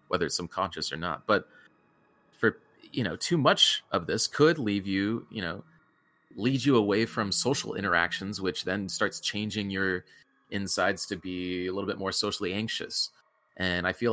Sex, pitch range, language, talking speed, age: male, 85-110 Hz, English, 175 wpm, 30-49